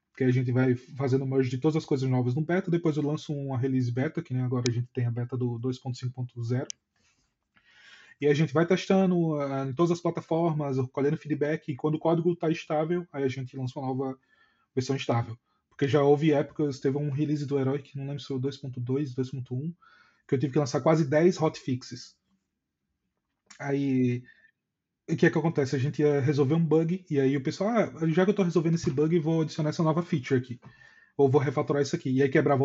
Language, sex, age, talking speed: Portuguese, male, 20-39, 215 wpm